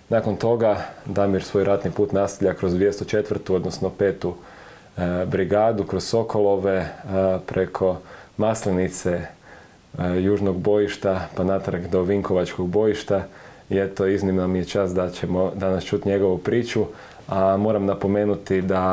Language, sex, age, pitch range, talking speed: Croatian, male, 30-49, 95-105 Hz, 125 wpm